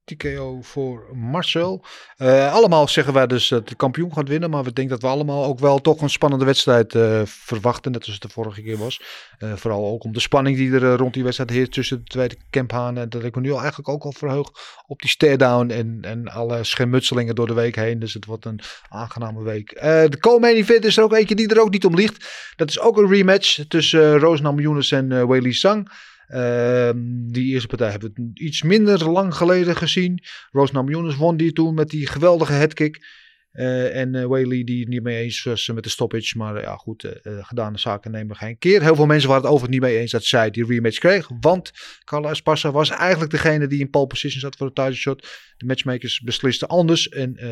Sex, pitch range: male, 120-155 Hz